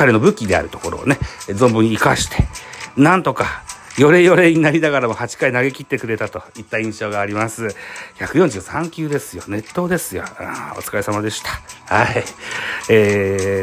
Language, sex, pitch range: Japanese, male, 110-155 Hz